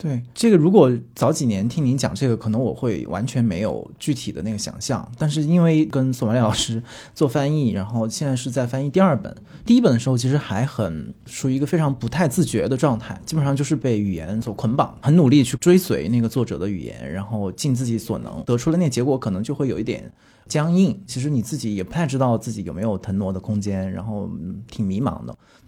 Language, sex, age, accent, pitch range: Chinese, male, 20-39, native, 110-155 Hz